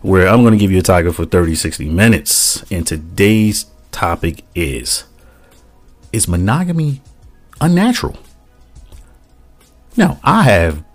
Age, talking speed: 40-59, 115 wpm